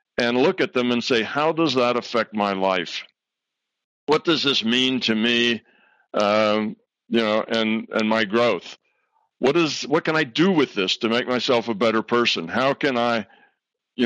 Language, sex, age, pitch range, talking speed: English, male, 60-79, 115-150 Hz, 185 wpm